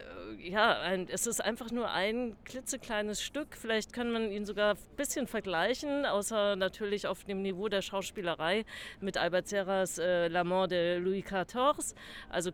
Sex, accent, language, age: female, German, German, 50-69